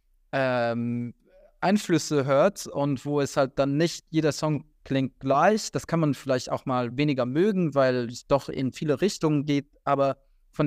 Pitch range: 130-150 Hz